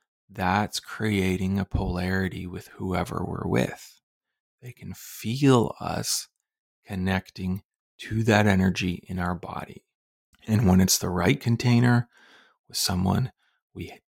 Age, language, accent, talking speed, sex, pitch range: 30-49, English, American, 120 wpm, male, 95-115 Hz